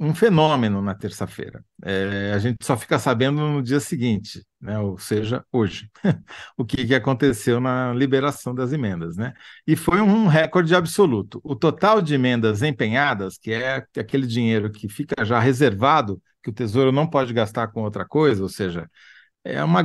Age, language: 50-69, Portuguese